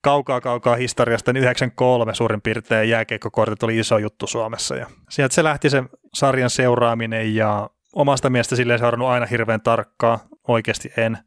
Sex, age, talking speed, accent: male, 20-39, 155 wpm, native